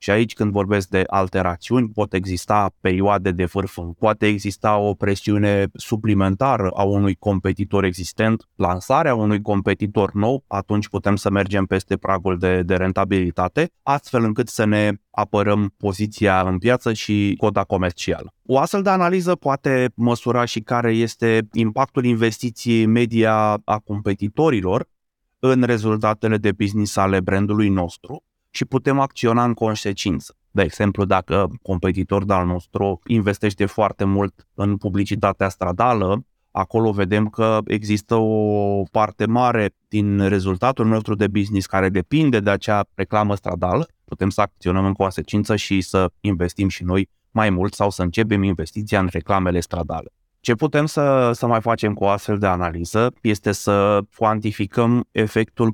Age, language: 20-39, Romanian